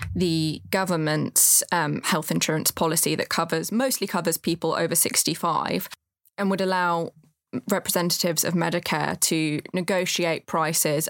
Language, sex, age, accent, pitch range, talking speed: English, female, 20-39, British, 155-180 Hz, 125 wpm